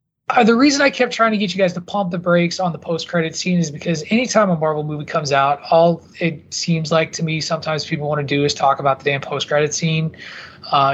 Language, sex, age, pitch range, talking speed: English, male, 20-39, 150-185 Hz, 260 wpm